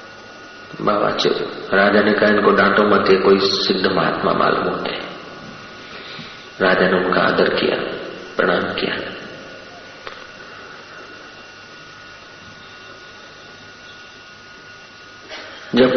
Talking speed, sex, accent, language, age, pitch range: 75 wpm, male, native, Hindi, 50-69, 115-130 Hz